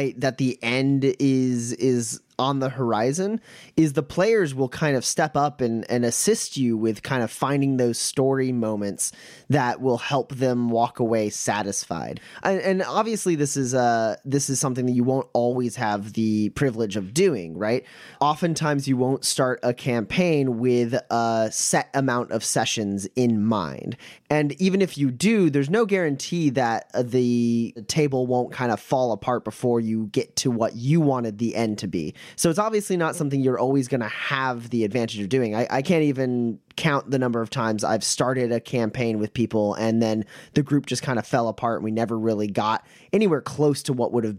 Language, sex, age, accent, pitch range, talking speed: English, male, 20-39, American, 115-140 Hz, 190 wpm